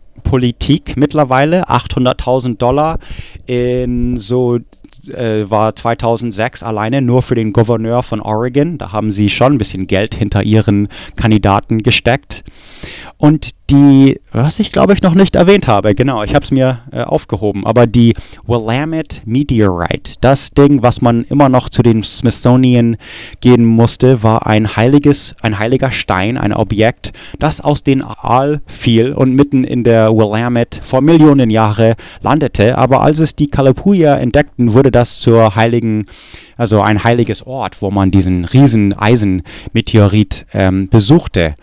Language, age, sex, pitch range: English, 30-49, male, 105-130 Hz